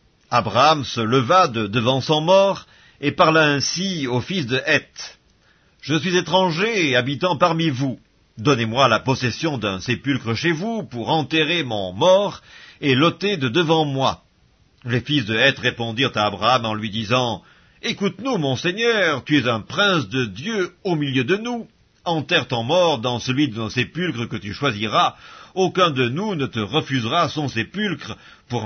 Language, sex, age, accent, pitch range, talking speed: French, male, 50-69, French, 120-170 Hz, 165 wpm